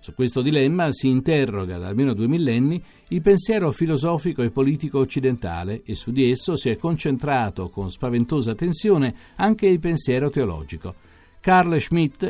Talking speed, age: 150 wpm, 50-69